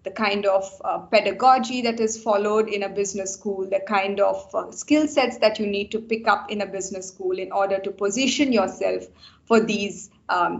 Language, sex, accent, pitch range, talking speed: English, female, Indian, 200-230 Hz, 205 wpm